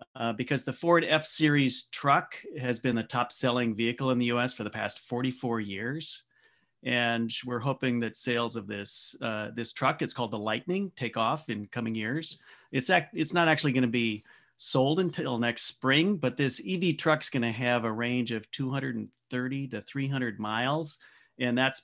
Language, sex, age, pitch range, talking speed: English, male, 40-59, 115-145 Hz, 180 wpm